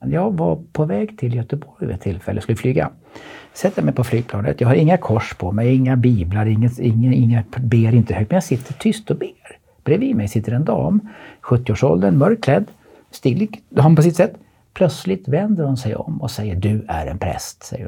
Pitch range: 115-155 Hz